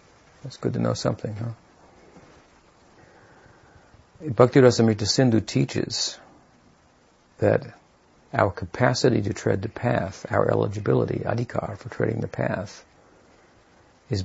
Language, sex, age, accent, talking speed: English, male, 60-79, American, 105 wpm